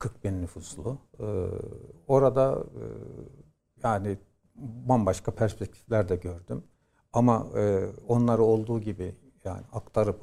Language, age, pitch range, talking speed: Turkish, 60-79, 100-125 Hz, 90 wpm